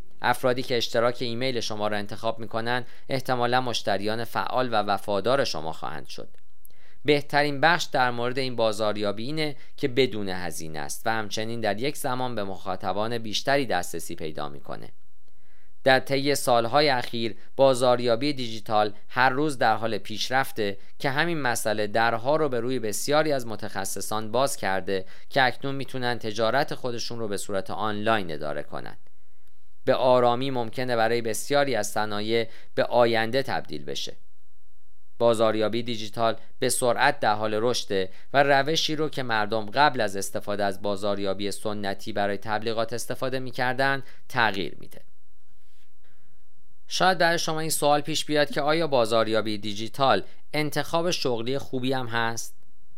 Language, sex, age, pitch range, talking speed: Persian, male, 40-59, 105-135 Hz, 140 wpm